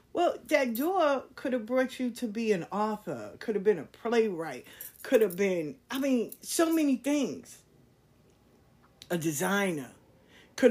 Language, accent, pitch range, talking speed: English, American, 135-215 Hz, 150 wpm